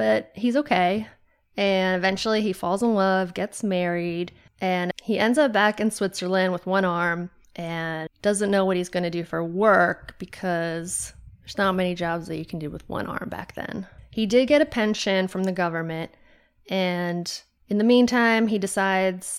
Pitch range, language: 180-215 Hz, English